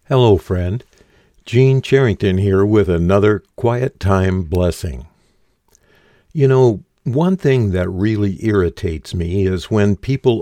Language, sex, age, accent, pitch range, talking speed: English, male, 60-79, American, 95-110 Hz, 120 wpm